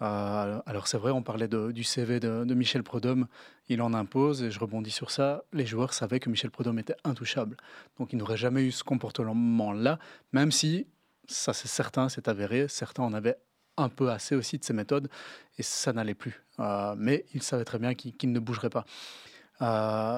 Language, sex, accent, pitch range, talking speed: English, male, French, 115-145 Hz, 205 wpm